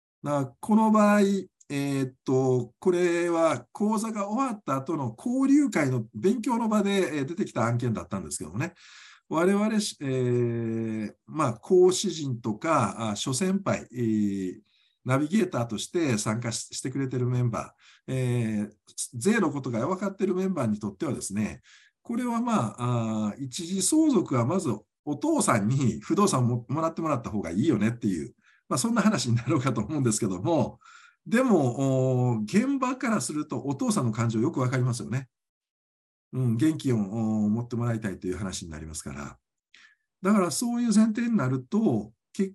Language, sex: Japanese, male